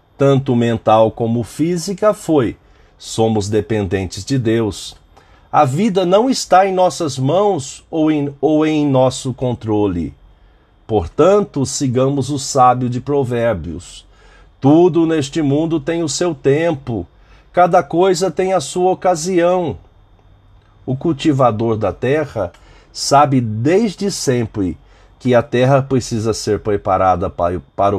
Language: Portuguese